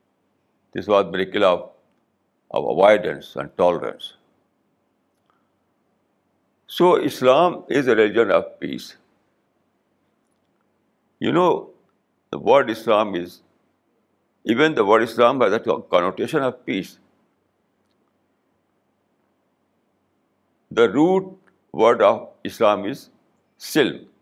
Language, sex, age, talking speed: Urdu, male, 60-79, 95 wpm